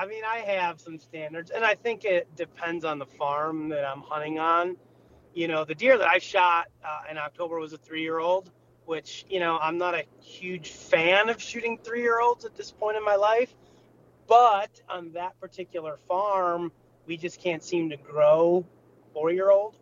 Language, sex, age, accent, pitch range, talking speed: English, male, 30-49, American, 150-190 Hz, 180 wpm